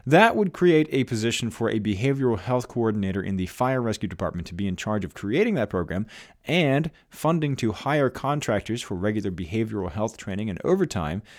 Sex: male